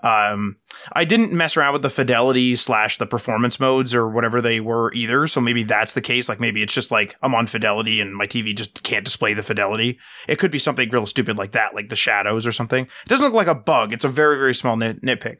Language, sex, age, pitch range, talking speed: English, male, 20-39, 115-145 Hz, 250 wpm